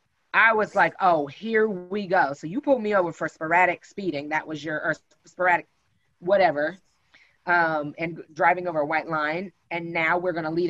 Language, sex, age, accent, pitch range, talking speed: English, female, 20-39, American, 160-210 Hz, 185 wpm